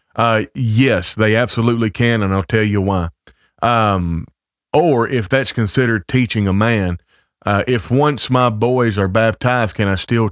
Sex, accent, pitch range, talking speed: male, American, 100-125 Hz, 165 wpm